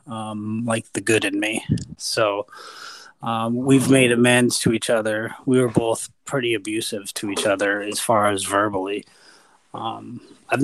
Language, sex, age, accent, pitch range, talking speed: English, male, 30-49, American, 115-145 Hz, 160 wpm